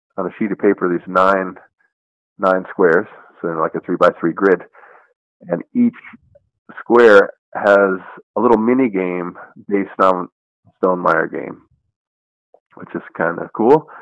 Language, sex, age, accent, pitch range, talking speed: English, male, 30-49, American, 90-105 Hz, 145 wpm